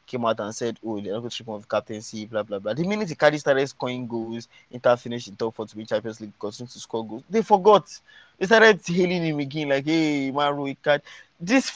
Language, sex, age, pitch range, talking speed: English, male, 20-39, 115-155 Hz, 240 wpm